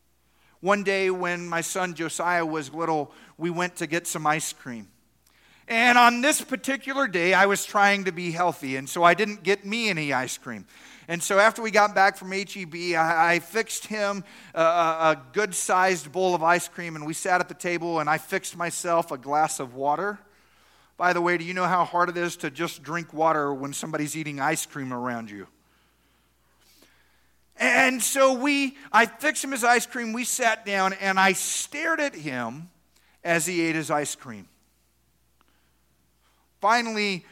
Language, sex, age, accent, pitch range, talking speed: English, male, 40-59, American, 160-225 Hz, 180 wpm